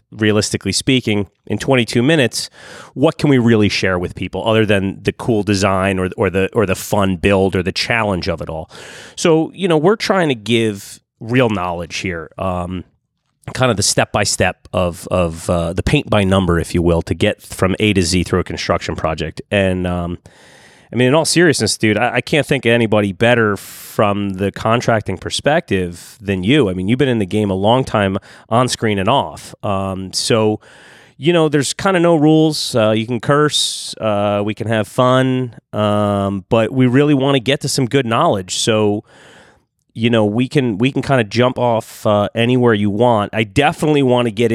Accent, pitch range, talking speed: American, 95-125 Hz, 205 wpm